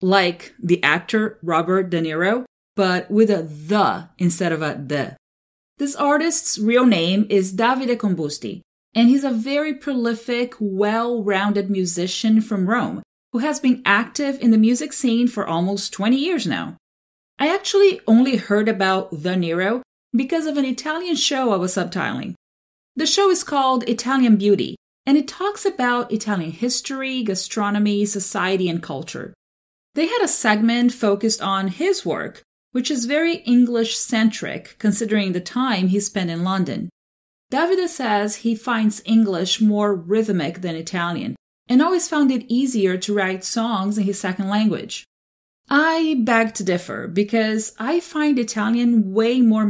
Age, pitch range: 30-49, 190-250 Hz